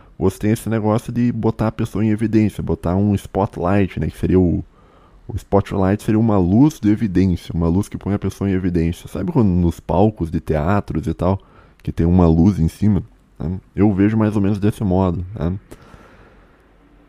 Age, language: 20-39, Portuguese